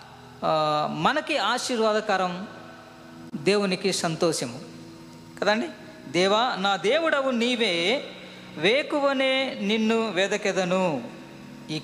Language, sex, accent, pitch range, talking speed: Telugu, female, native, 165-235 Hz, 65 wpm